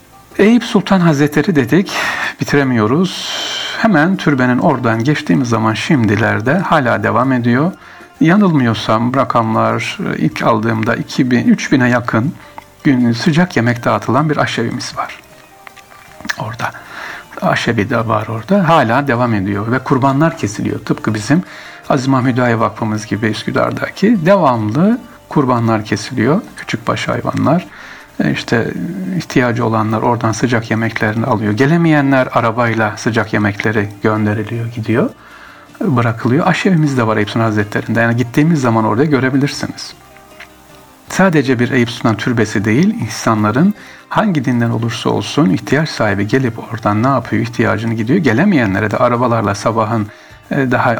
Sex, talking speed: male, 115 wpm